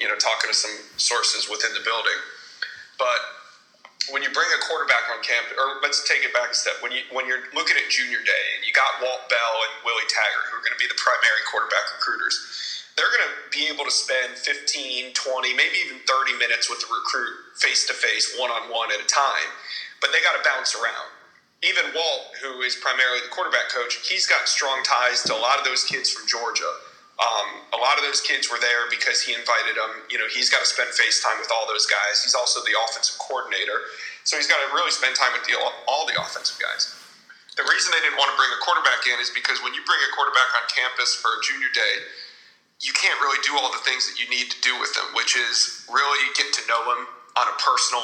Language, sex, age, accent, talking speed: English, male, 30-49, American, 235 wpm